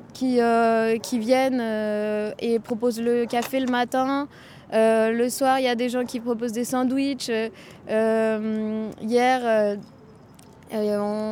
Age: 20-39